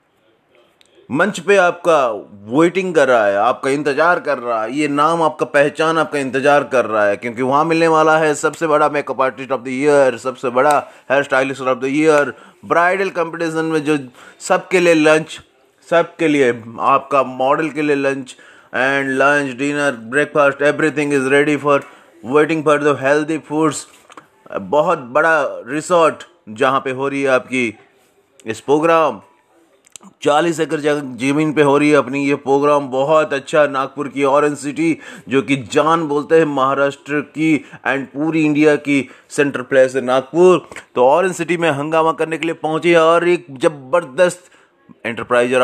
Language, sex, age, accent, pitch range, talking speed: English, male, 30-49, Indian, 130-155 Hz, 140 wpm